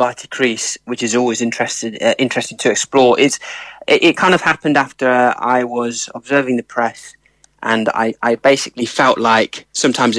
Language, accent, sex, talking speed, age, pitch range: English, British, male, 165 wpm, 20-39, 120-145 Hz